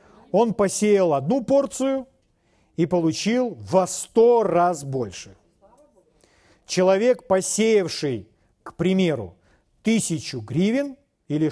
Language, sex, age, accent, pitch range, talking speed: Russian, male, 40-59, native, 155-215 Hz, 90 wpm